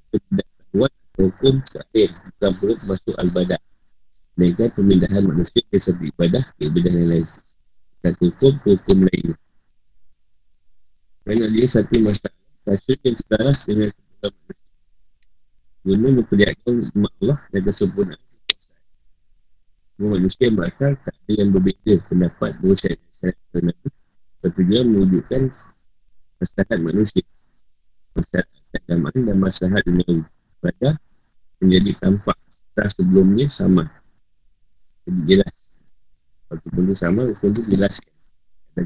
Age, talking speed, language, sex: 50-69, 105 wpm, Malay, male